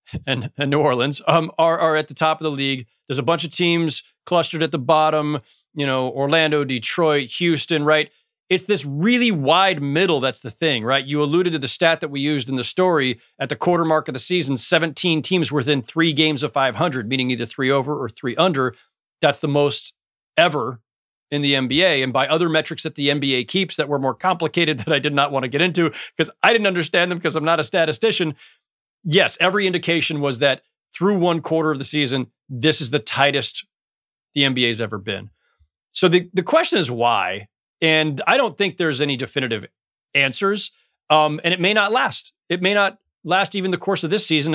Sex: male